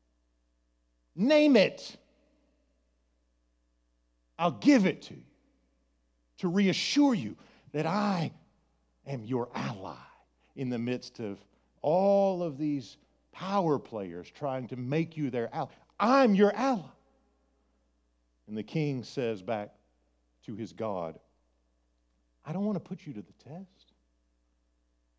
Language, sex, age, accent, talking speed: English, male, 50-69, American, 120 wpm